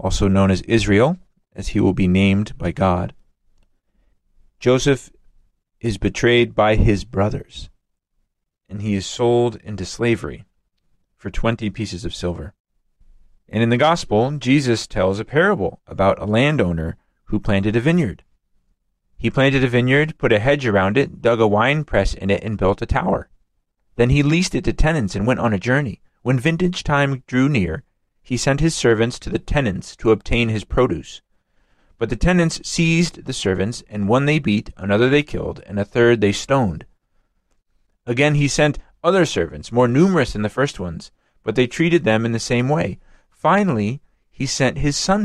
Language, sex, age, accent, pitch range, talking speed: English, male, 40-59, American, 100-140 Hz, 175 wpm